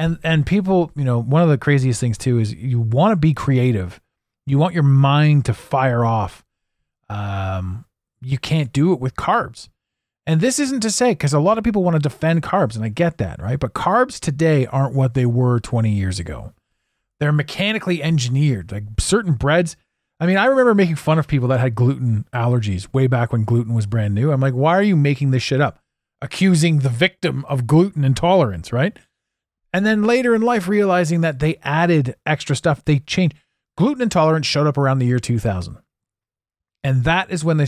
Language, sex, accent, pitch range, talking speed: English, male, American, 120-165 Hz, 200 wpm